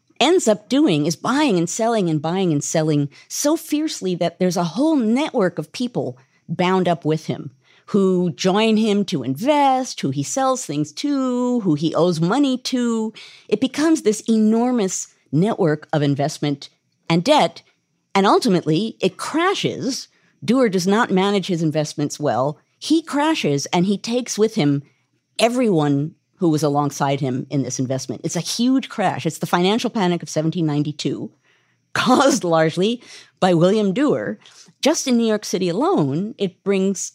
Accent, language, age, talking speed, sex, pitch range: American, English, 50-69, 155 wpm, female, 150-220 Hz